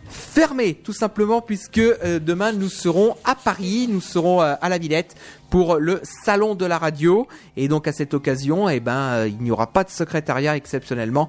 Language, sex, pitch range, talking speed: French, male, 130-185 Hz, 195 wpm